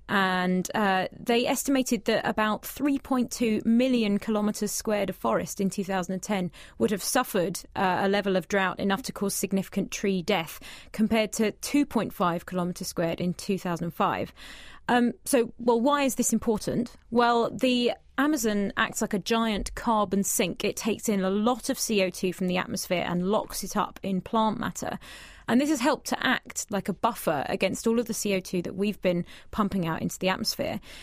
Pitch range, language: 190-235 Hz, English